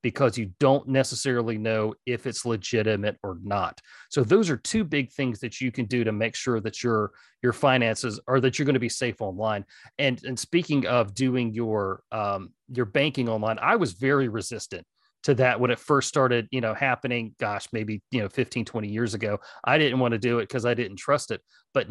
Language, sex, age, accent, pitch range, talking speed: English, male, 40-59, American, 110-135 Hz, 215 wpm